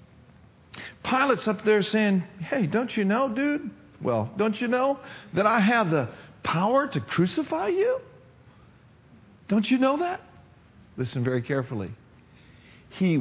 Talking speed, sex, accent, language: 130 wpm, male, American, English